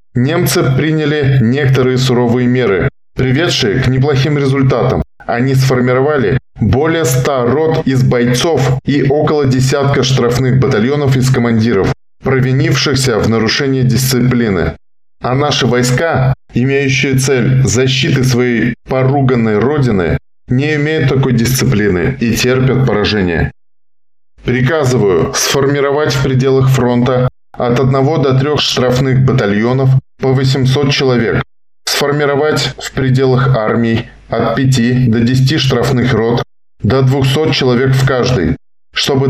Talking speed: 110 wpm